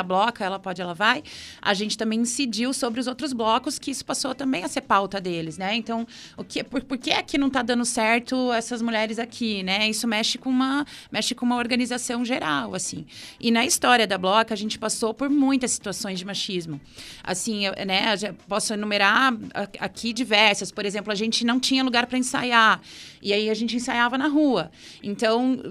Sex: female